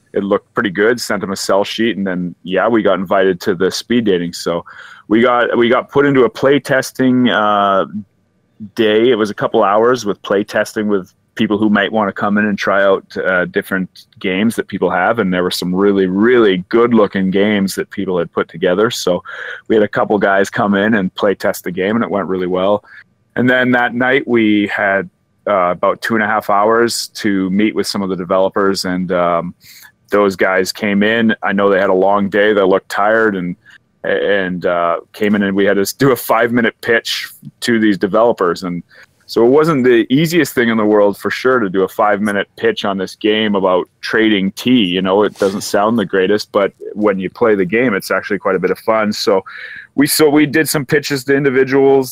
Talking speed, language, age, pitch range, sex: 225 wpm, English, 30-49, 95-115 Hz, male